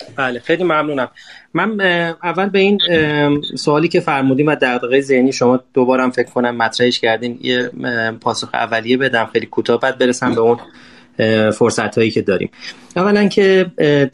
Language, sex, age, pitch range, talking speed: Persian, male, 30-49, 120-150 Hz, 140 wpm